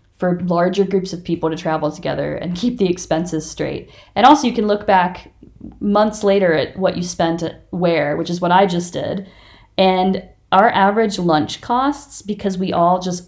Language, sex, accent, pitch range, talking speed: English, female, American, 165-215 Hz, 190 wpm